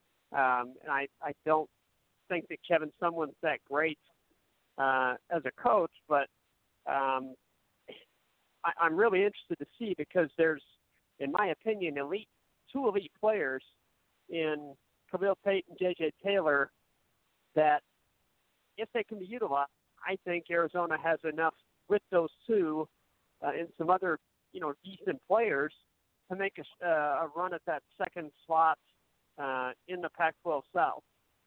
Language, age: English, 50-69